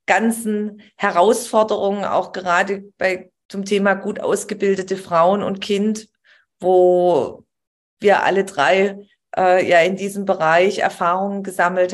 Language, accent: German, German